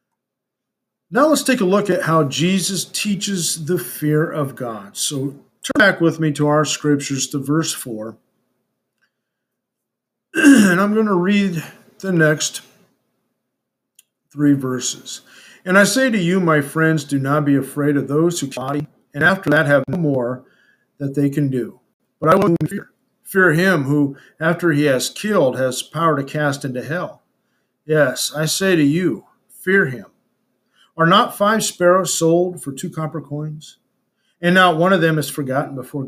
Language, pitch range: English, 140-185 Hz